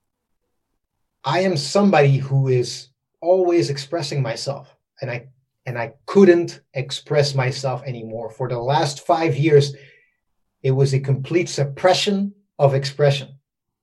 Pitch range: 135-180 Hz